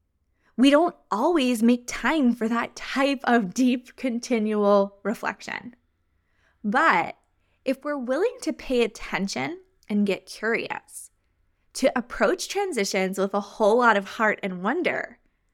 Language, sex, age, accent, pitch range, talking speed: English, female, 10-29, American, 180-240 Hz, 125 wpm